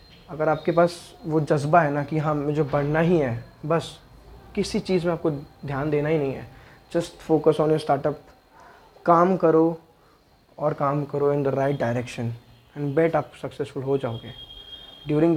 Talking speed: 170 wpm